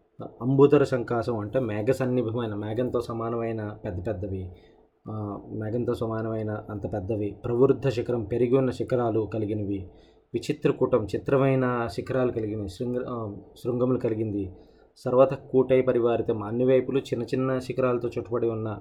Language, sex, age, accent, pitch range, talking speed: Telugu, male, 20-39, native, 110-130 Hz, 115 wpm